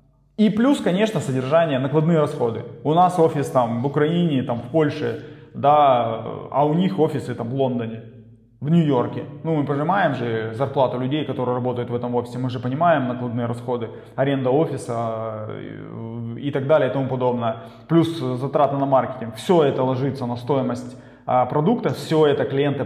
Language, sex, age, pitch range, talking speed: Russian, male, 20-39, 125-155 Hz, 165 wpm